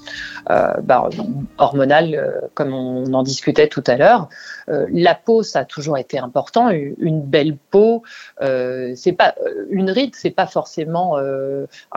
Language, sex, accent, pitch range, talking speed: French, female, French, 145-185 Hz, 170 wpm